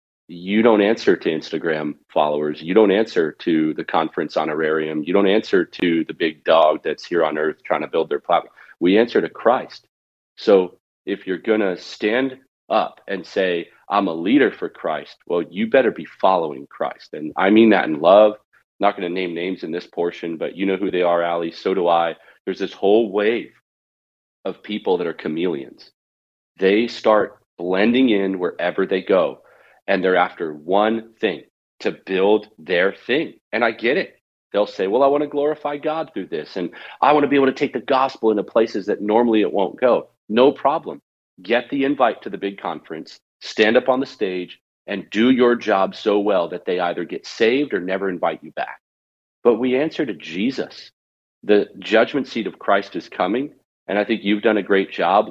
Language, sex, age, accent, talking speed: English, male, 40-59, American, 200 wpm